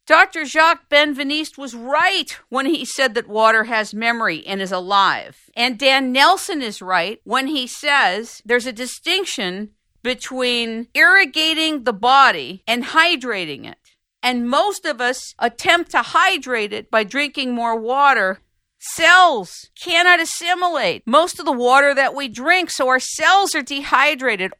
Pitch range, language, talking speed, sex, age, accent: 230-310 Hz, English, 145 wpm, female, 50-69, American